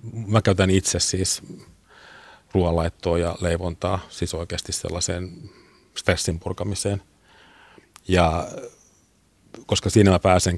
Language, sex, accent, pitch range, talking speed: Finnish, male, native, 90-100 Hz, 95 wpm